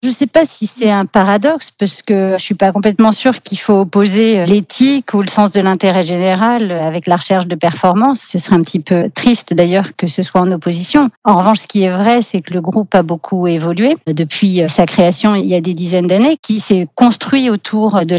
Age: 40-59